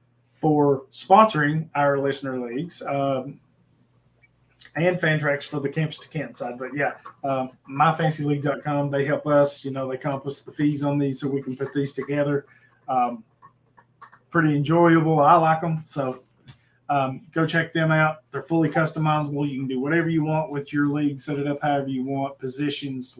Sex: male